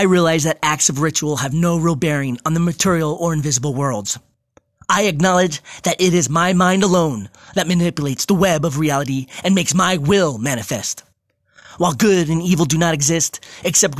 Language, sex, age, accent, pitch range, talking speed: English, male, 30-49, American, 155-190 Hz, 185 wpm